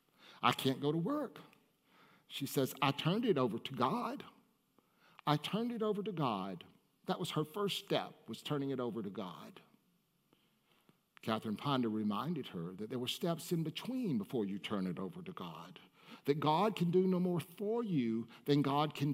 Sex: male